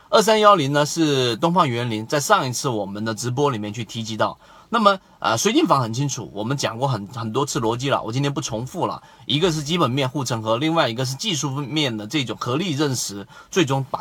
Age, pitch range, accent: 30-49, 120-170 Hz, native